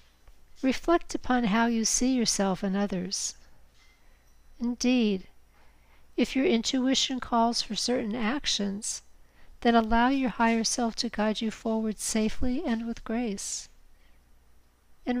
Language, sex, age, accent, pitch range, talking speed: English, female, 60-79, American, 170-245 Hz, 120 wpm